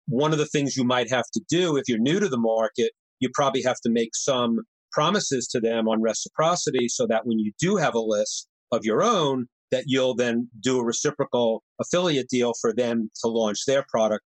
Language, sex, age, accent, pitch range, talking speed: English, male, 40-59, American, 115-150 Hz, 215 wpm